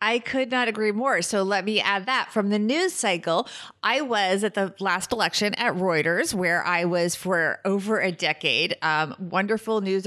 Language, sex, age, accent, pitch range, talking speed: English, female, 30-49, American, 175-210 Hz, 190 wpm